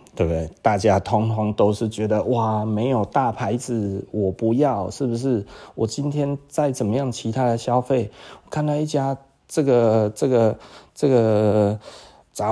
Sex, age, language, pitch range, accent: male, 30-49, Chinese, 110-140 Hz, native